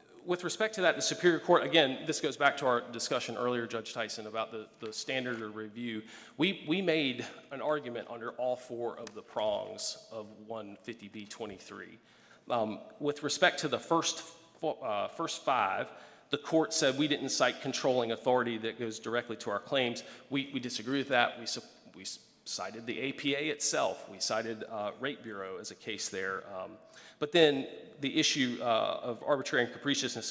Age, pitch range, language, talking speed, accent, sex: 40-59, 115-145 Hz, English, 180 wpm, American, male